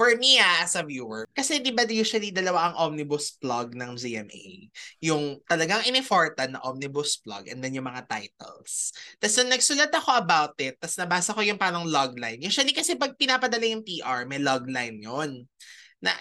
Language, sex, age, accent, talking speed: Filipino, male, 20-39, native, 175 wpm